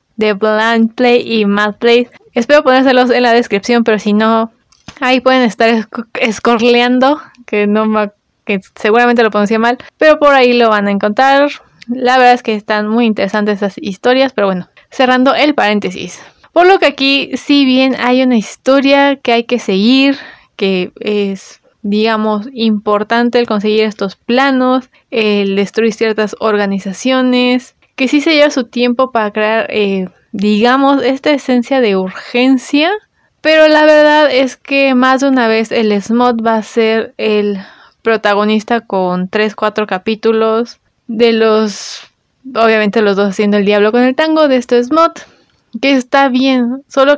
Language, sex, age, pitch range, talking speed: Spanish, female, 20-39, 215-255 Hz, 155 wpm